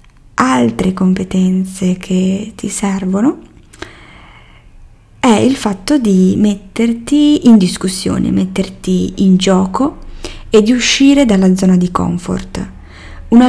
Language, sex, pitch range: Italian, female, 185-225 Hz